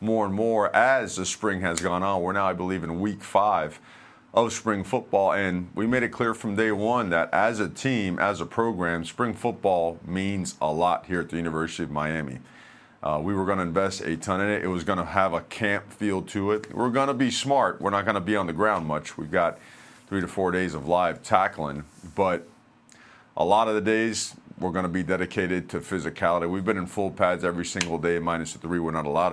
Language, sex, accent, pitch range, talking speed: English, male, American, 85-110 Hz, 235 wpm